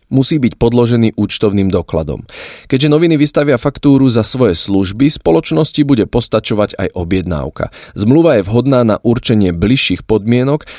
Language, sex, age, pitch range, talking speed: Slovak, male, 30-49, 95-125 Hz, 135 wpm